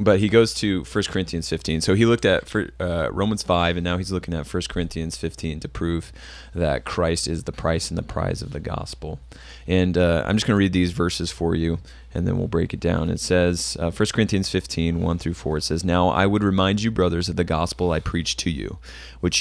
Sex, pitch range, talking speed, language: male, 75-95 Hz, 240 wpm, English